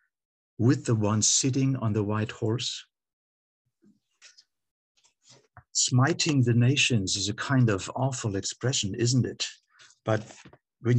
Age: 60-79